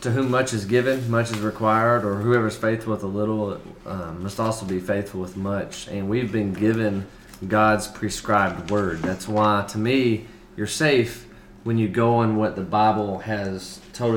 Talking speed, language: 180 wpm, English